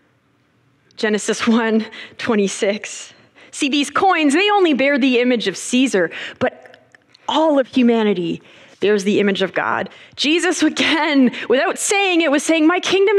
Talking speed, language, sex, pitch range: 140 wpm, English, female, 215-305 Hz